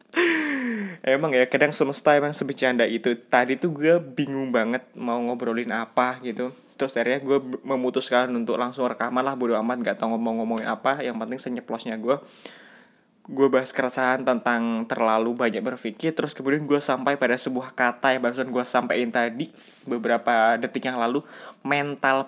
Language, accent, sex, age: Indonesian, native, male, 20-39